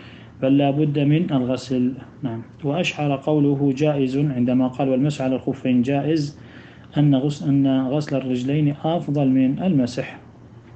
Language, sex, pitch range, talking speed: Arabic, male, 125-145 Hz, 125 wpm